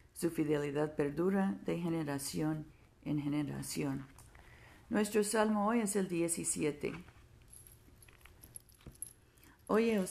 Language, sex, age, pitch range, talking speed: Spanish, female, 50-69, 150-190 Hz, 90 wpm